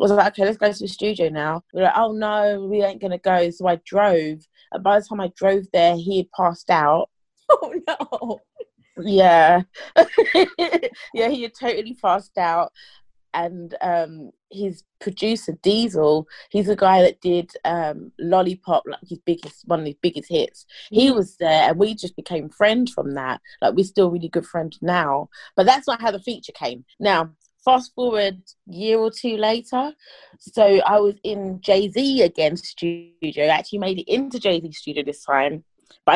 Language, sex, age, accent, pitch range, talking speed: English, female, 20-39, British, 165-210 Hz, 185 wpm